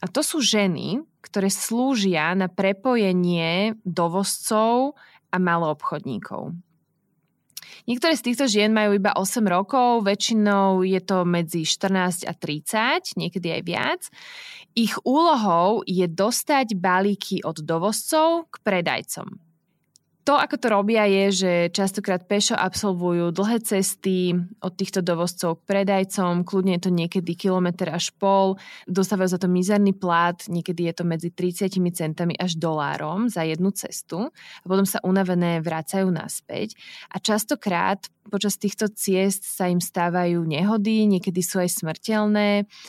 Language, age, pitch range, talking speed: Slovak, 20-39, 170-200 Hz, 135 wpm